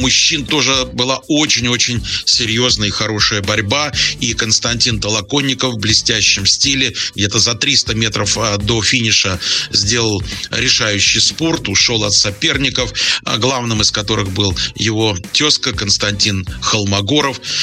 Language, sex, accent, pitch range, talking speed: Russian, male, native, 105-125 Hz, 115 wpm